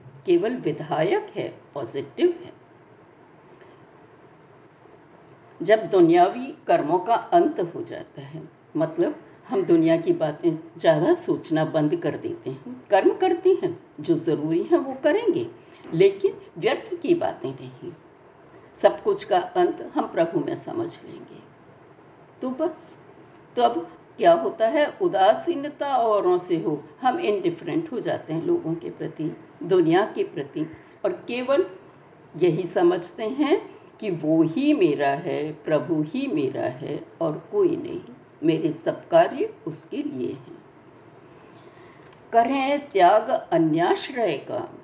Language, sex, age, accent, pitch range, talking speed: Hindi, female, 60-79, native, 250-360 Hz, 130 wpm